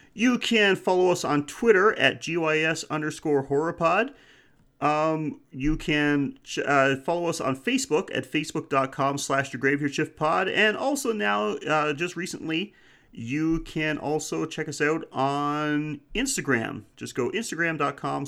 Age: 30-49